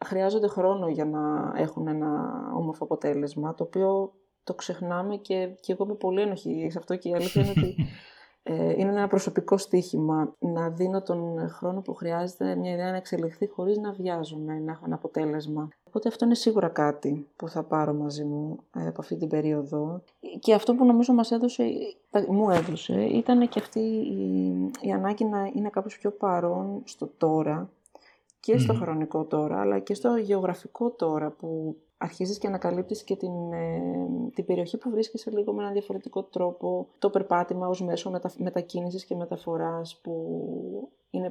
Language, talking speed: Greek, 175 wpm